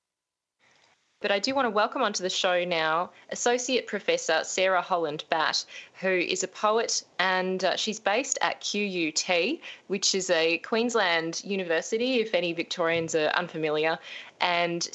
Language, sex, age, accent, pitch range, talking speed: English, female, 20-39, Australian, 165-205 Hz, 135 wpm